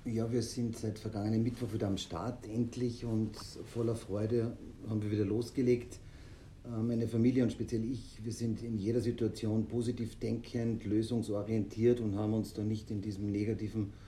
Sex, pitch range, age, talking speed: male, 95-115 Hz, 50-69, 160 wpm